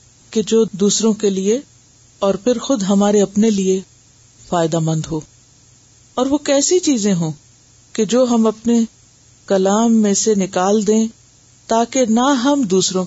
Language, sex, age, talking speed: Urdu, female, 50-69, 145 wpm